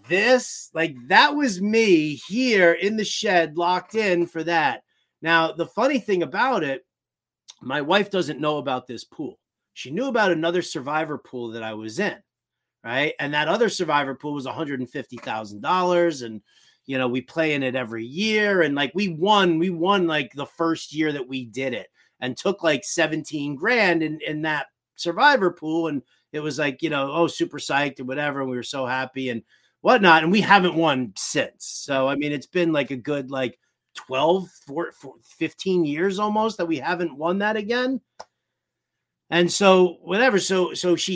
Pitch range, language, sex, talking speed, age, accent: 145-190 Hz, English, male, 185 wpm, 30-49, American